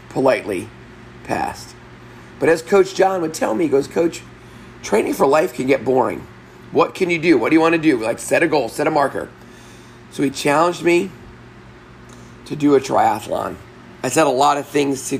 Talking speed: 195 wpm